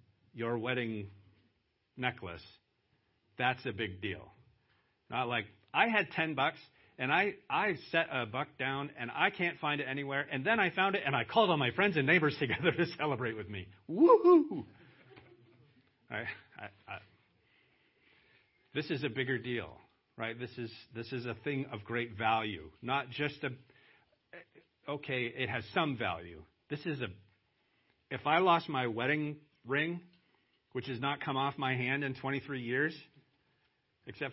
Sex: male